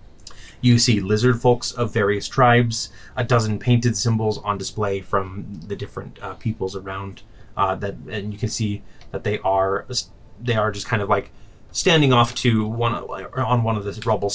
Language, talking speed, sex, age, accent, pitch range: English, 180 wpm, male, 30-49, American, 100-120 Hz